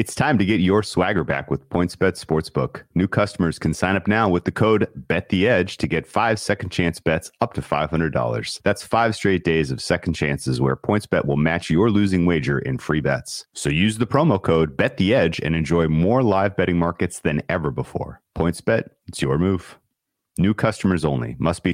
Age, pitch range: 30-49, 80-95 Hz